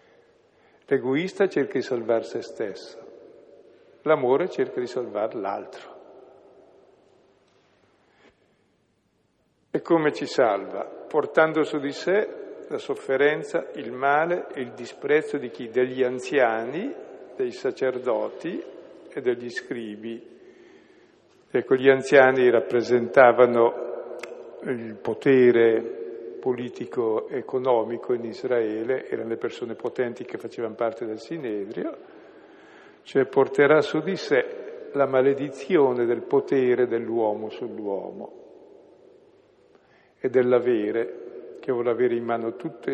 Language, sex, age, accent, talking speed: Italian, male, 50-69, native, 100 wpm